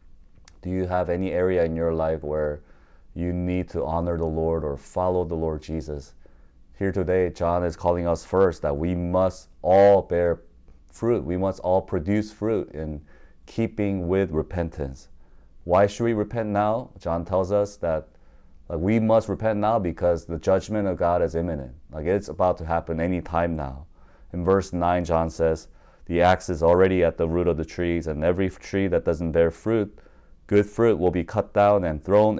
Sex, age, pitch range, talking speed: male, 30-49, 80-100 Hz, 185 wpm